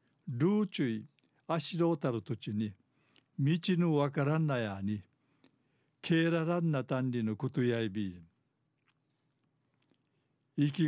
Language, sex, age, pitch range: Japanese, male, 60-79, 130-155 Hz